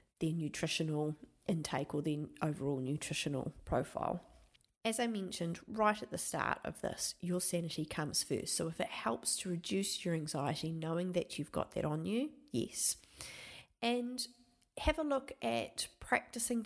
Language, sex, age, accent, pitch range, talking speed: English, female, 30-49, Australian, 155-190 Hz, 155 wpm